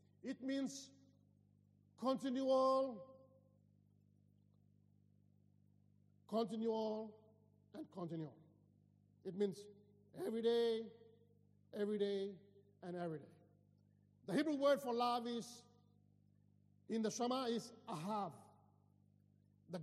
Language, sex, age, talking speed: English, male, 50-69, 80 wpm